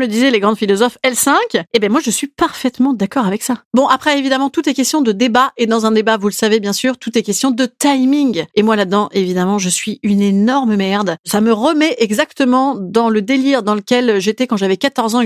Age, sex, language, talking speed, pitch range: 30-49, female, French, 245 wpm, 215-310 Hz